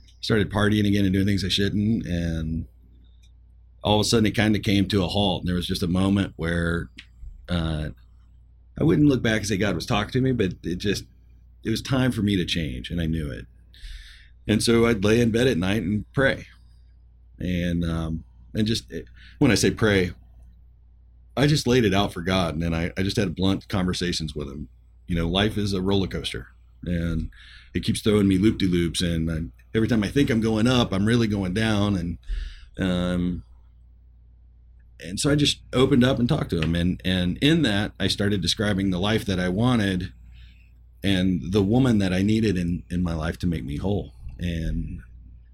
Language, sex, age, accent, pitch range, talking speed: English, male, 40-59, American, 70-100 Hz, 200 wpm